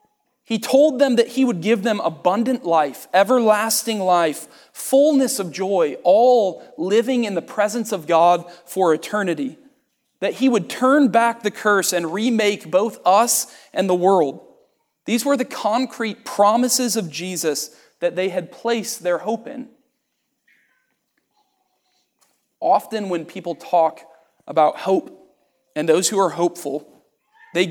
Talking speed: 140 wpm